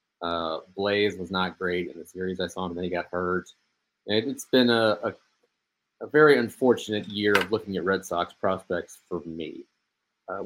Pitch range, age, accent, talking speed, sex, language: 95-120 Hz, 30-49, American, 195 wpm, male, English